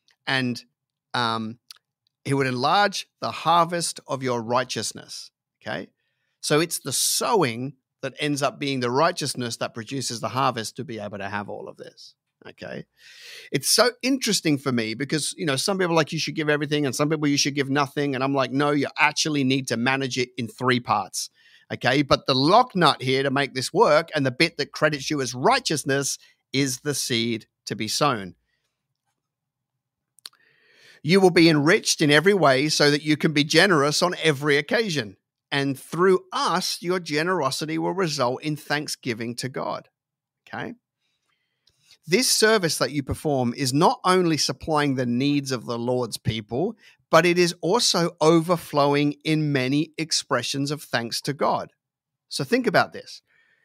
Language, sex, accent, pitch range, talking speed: English, male, Australian, 130-160 Hz, 170 wpm